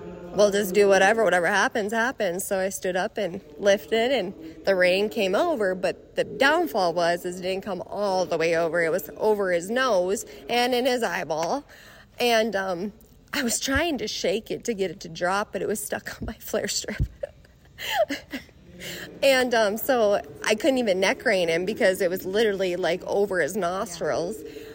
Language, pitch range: English, 185-240 Hz